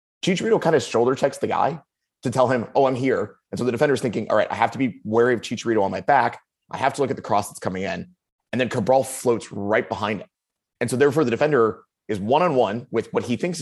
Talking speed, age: 250 wpm, 20-39